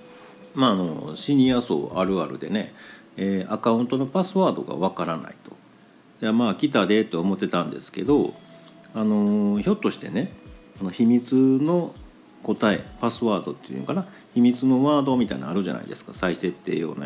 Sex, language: male, Japanese